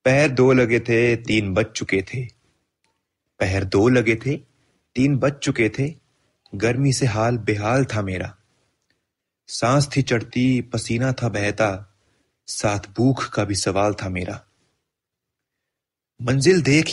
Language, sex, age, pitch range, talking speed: Hindi, male, 30-49, 105-135 Hz, 130 wpm